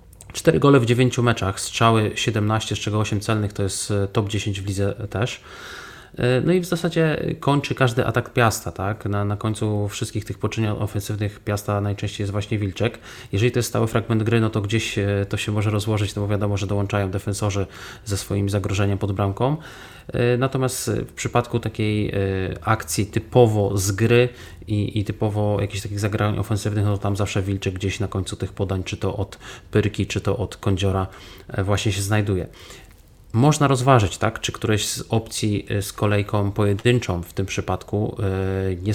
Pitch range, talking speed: 100-110 Hz, 170 wpm